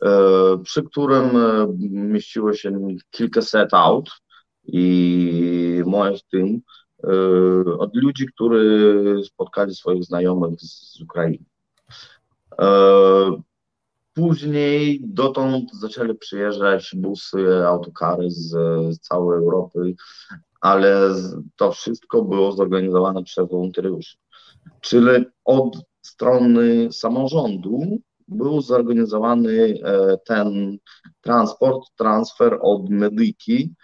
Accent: native